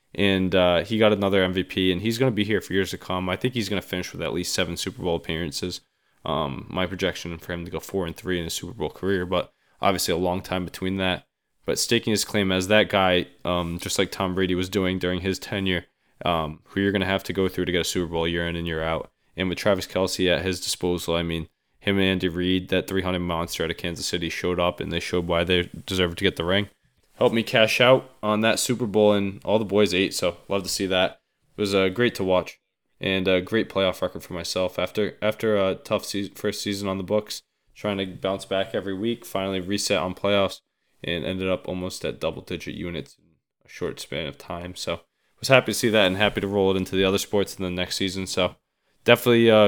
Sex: male